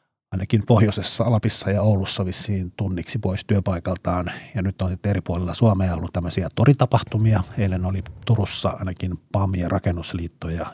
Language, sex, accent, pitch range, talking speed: Finnish, male, native, 95-110 Hz, 140 wpm